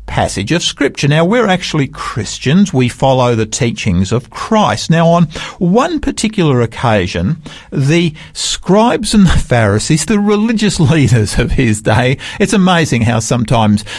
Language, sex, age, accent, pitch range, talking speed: English, male, 50-69, Australian, 105-165 Hz, 140 wpm